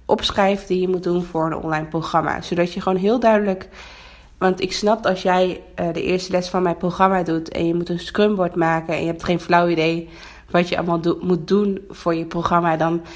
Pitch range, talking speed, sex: 165-185 Hz, 225 wpm, female